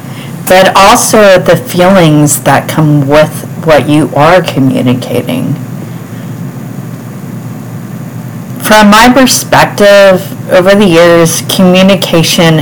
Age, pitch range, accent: 30-49, 145-170 Hz, American